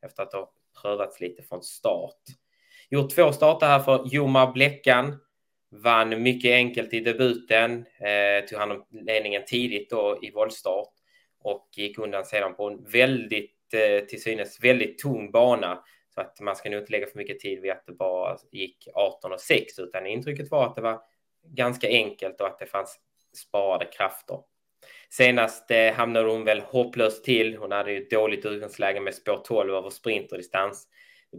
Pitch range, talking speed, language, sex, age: 105-135 Hz, 175 wpm, Swedish, male, 20-39